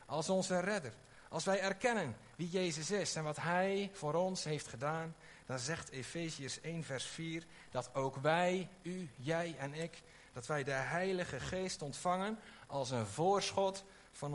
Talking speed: 165 wpm